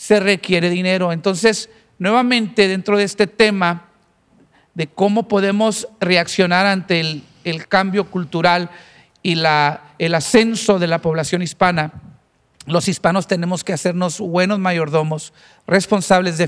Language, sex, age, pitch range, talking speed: English, male, 50-69, 165-205 Hz, 125 wpm